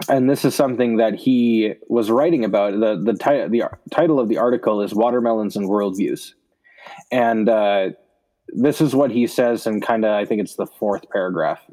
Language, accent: English, American